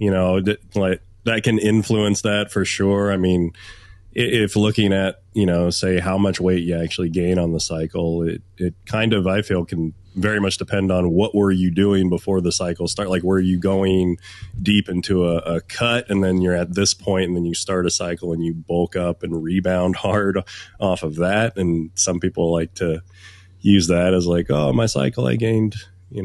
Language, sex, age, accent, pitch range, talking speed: English, male, 20-39, American, 85-100 Hz, 210 wpm